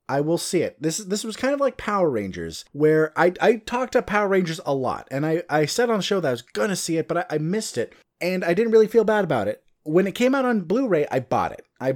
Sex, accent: male, American